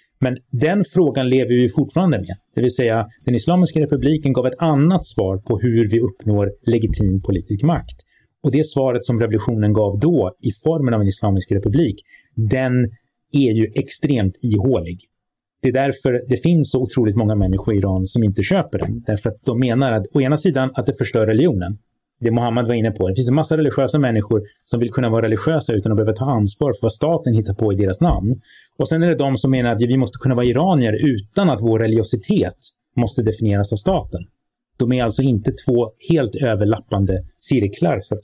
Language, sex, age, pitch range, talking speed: Swedish, male, 30-49, 110-135 Hz, 200 wpm